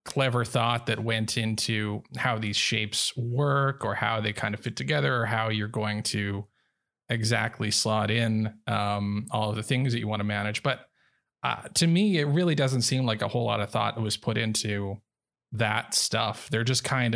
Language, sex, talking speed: English, male, 195 wpm